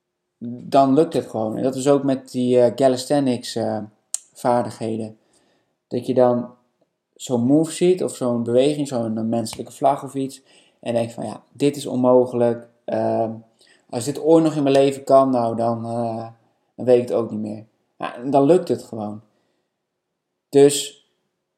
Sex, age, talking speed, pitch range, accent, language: male, 20-39, 165 wpm, 115-135 Hz, Dutch, Dutch